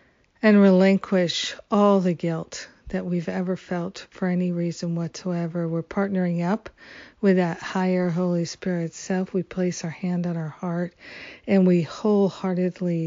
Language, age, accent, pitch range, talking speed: English, 50-69, American, 170-190 Hz, 145 wpm